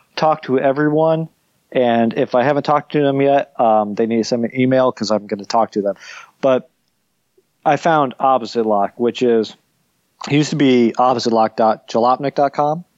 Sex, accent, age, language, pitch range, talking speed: male, American, 20-39, English, 115-140 Hz, 170 wpm